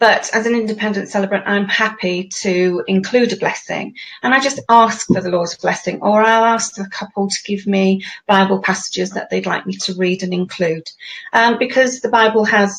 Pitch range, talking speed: 180-215 Hz, 195 wpm